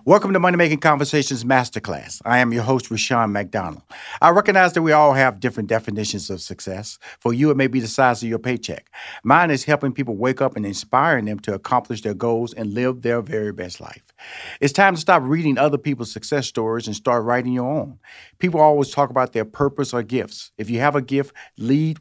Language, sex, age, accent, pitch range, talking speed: English, male, 50-69, American, 115-140 Hz, 215 wpm